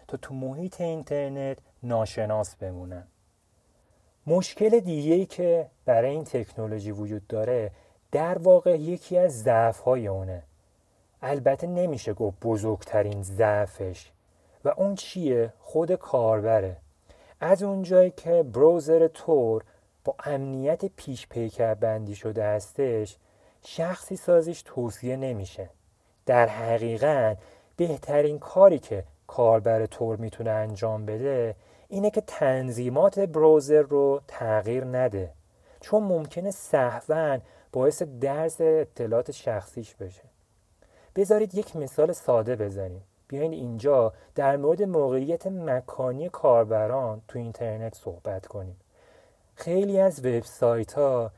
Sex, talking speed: male, 110 wpm